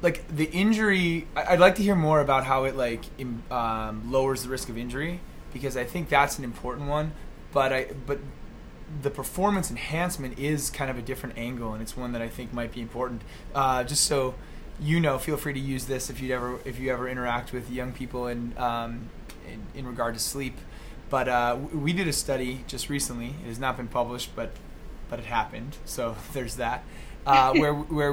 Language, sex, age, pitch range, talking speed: English, male, 20-39, 120-145 Hz, 205 wpm